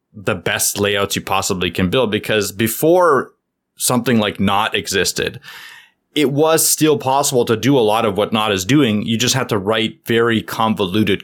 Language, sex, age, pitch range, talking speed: English, male, 20-39, 100-120 Hz, 175 wpm